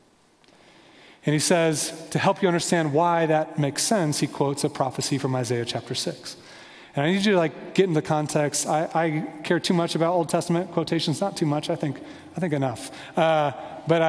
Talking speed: 200 wpm